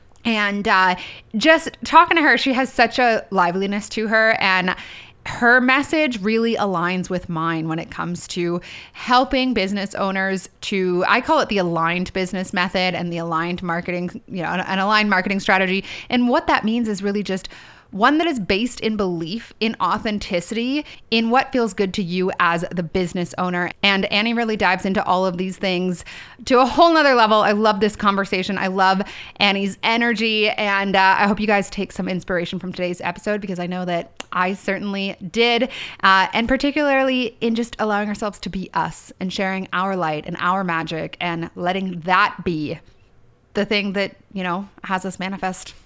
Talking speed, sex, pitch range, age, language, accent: 185 wpm, female, 185-230 Hz, 20-39, English, American